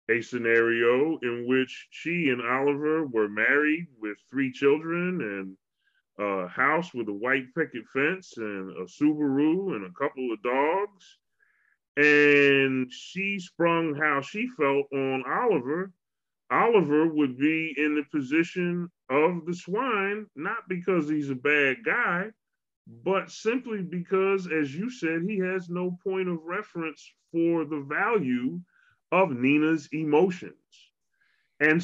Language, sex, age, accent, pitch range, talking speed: English, female, 30-49, American, 125-185 Hz, 130 wpm